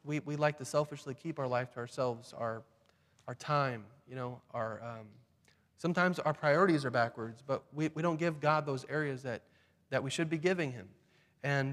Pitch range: 130-160 Hz